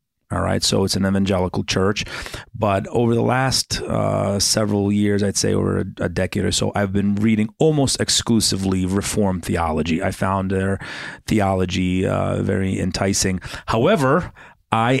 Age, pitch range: 30-49, 100-115 Hz